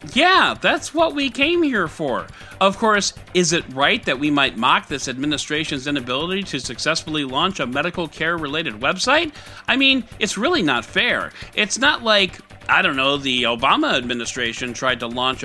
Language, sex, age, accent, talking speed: English, male, 40-59, American, 170 wpm